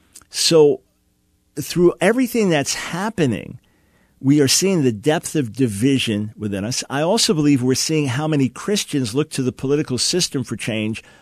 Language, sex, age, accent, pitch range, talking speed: English, male, 50-69, American, 120-150 Hz, 155 wpm